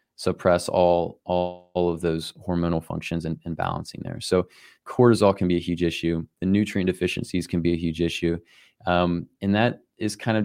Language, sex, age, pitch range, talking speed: English, male, 20-39, 90-100 Hz, 190 wpm